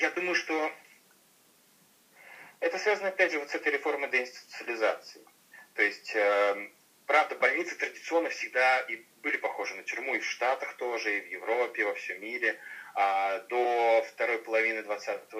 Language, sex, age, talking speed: Amharic, male, 30-49, 145 wpm